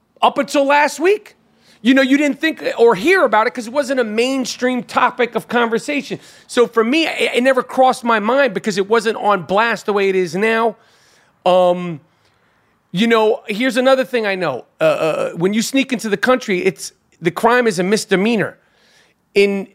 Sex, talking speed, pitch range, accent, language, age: male, 190 wpm, 185-240 Hz, American, English, 40-59